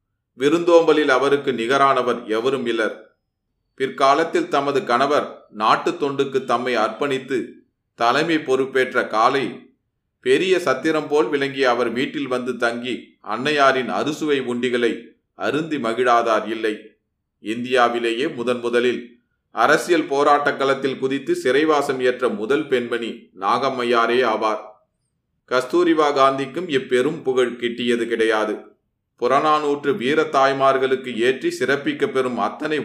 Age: 30-49